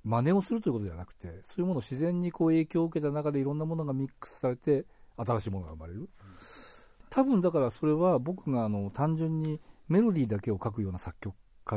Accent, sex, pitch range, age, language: native, male, 95-145 Hz, 40-59, Japanese